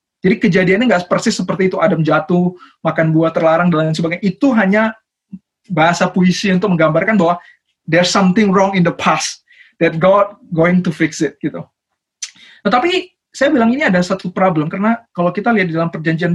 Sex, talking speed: male, 175 wpm